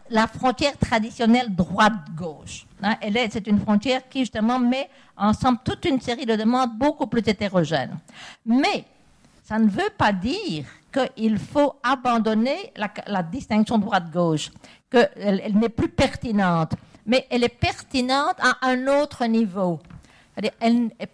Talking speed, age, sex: 140 wpm, 50-69, female